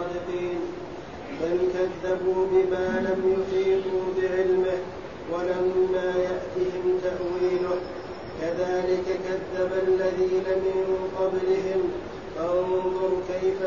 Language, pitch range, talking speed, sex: Arabic, 185-190 Hz, 70 wpm, male